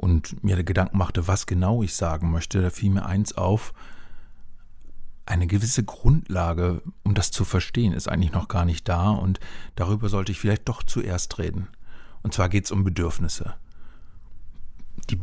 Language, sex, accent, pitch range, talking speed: German, male, German, 85-100 Hz, 170 wpm